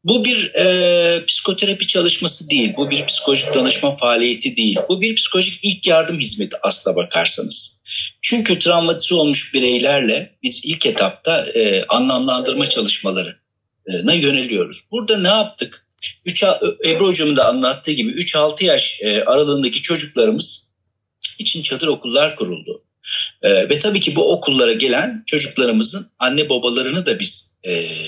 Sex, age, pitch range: male, 50-69, 140-215 Hz